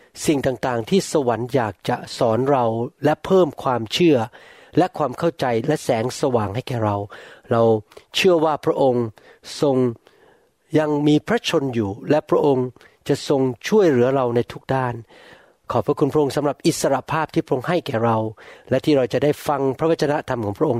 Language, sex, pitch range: Thai, male, 120-155 Hz